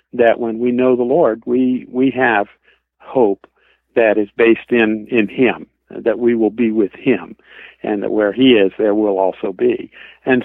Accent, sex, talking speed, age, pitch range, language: American, male, 185 wpm, 50-69, 110-125 Hz, English